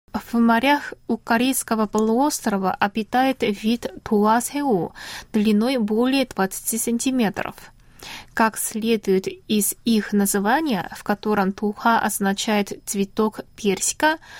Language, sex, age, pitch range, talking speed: Russian, female, 20-39, 210-260 Hz, 95 wpm